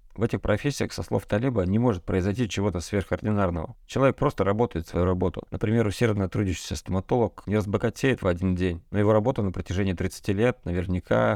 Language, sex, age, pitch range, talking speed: Russian, male, 30-49, 95-110 Hz, 180 wpm